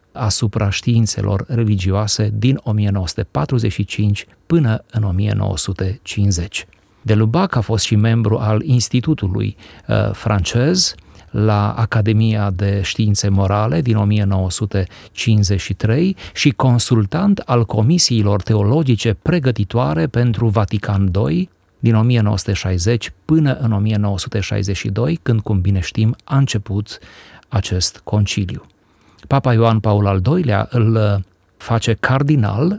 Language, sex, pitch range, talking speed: Romanian, male, 100-120 Hz, 95 wpm